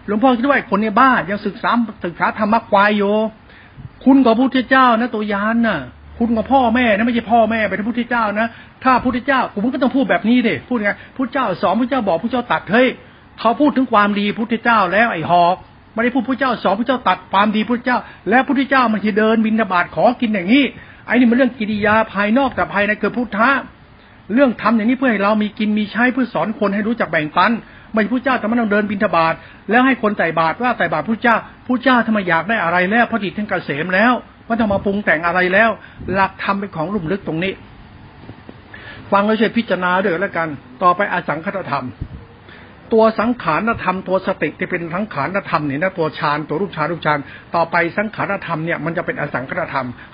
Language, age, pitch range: Thai, 60-79, 180-235 Hz